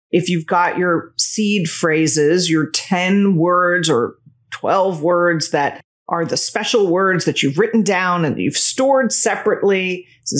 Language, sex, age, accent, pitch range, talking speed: English, female, 40-59, American, 155-195 Hz, 150 wpm